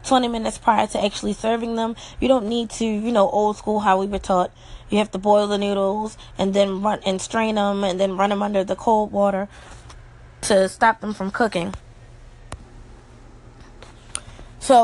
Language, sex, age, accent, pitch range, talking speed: English, female, 20-39, American, 200-245 Hz, 180 wpm